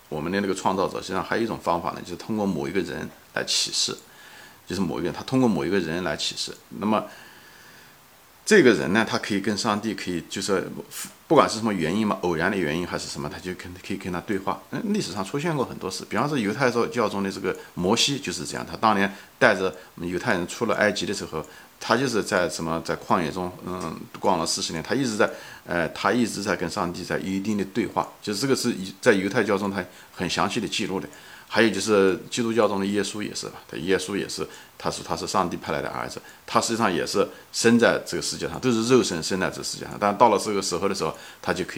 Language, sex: Chinese, male